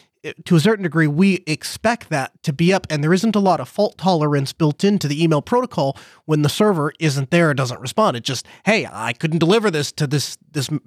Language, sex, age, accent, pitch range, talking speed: English, male, 30-49, American, 155-195 Hz, 225 wpm